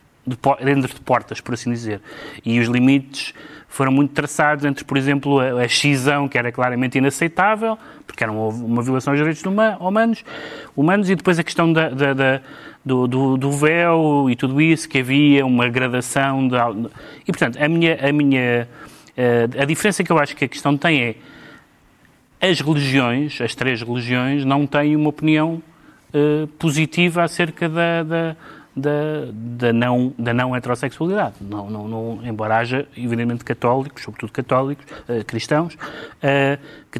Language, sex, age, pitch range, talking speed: Portuguese, male, 30-49, 125-155 Hz, 150 wpm